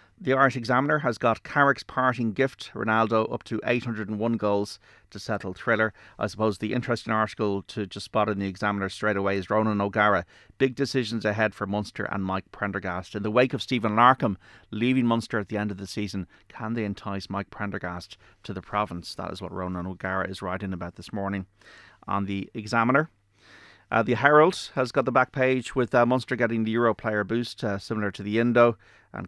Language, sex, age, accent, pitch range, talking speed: English, male, 30-49, Irish, 95-115 Hz, 200 wpm